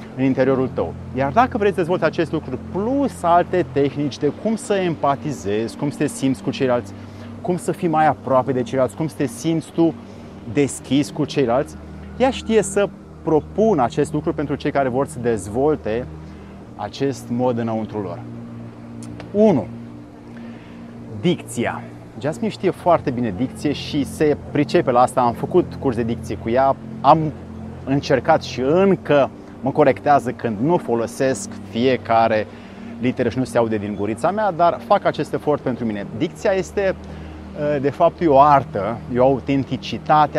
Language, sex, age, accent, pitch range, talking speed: Romanian, male, 30-49, native, 115-155 Hz, 155 wpm